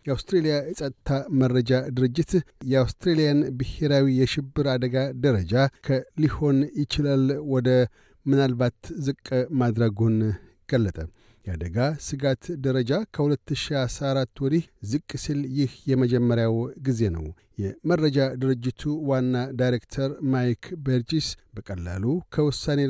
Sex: male